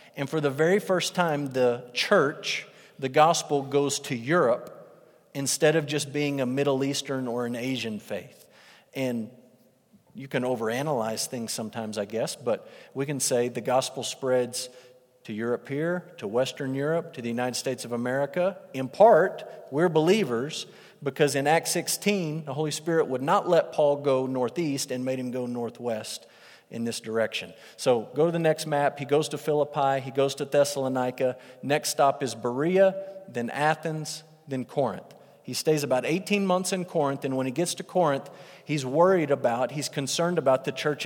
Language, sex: English, male